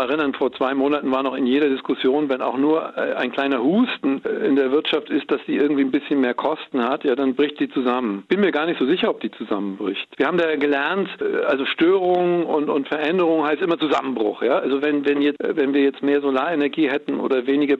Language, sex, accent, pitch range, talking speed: German, male, German, 140-180 Hz, 225 wpm